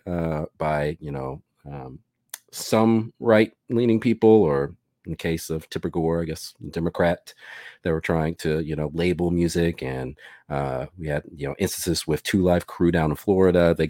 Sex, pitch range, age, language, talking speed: male, 75-95 Hz, 40-59, English, 180 wpm